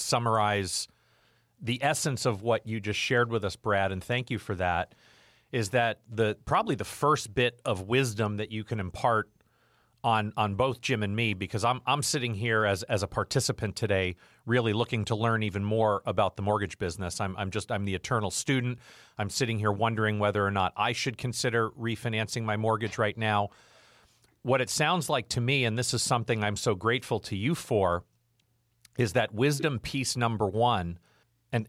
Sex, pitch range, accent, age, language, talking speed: male, 105-130 Hz, American, 40-59, English, 190 wpm